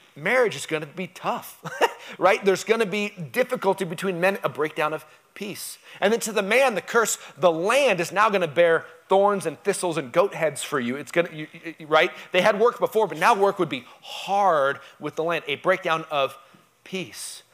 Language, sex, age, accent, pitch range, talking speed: English, male, 30-49, American, 160-210 Hz, 210 wpm